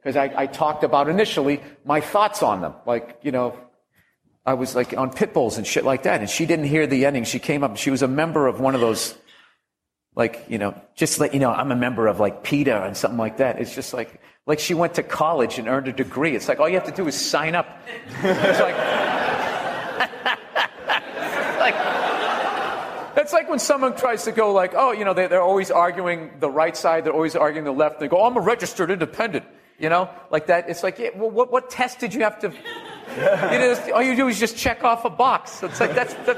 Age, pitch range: 40-59, 135-180 Hz